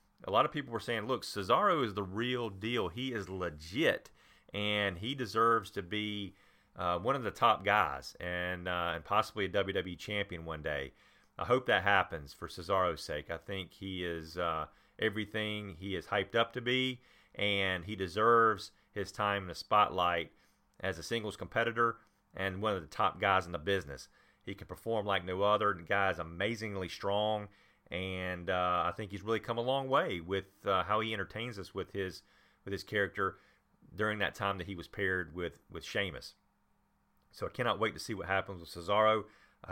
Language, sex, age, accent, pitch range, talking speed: English, male, 40-59, American, 90-105 Hz, 195 wpm